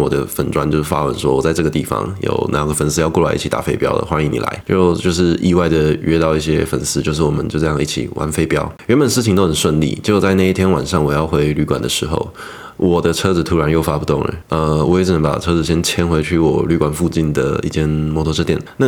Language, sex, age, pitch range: Chinese, male, 20-39, 75-85 Hz